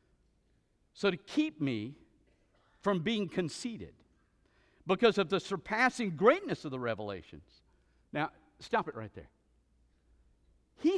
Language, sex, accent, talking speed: English, male, American, 115 wpm